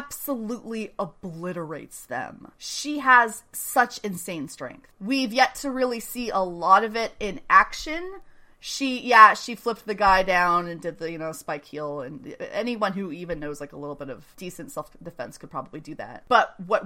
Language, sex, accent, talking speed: English, female, American, 185 wpm